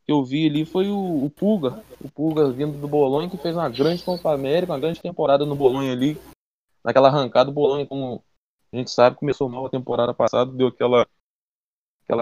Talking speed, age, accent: 200 wpm, 20-39, Brazilian